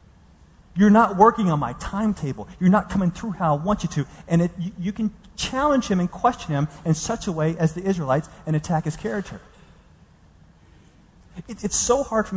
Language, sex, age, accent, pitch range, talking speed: English, male, 30-49, American, 140-195 Hz, 190 wpm